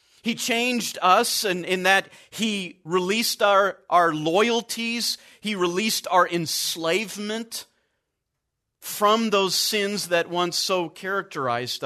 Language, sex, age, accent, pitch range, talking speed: English, male, 40-59, American, 125-170 Hz, 115 wpm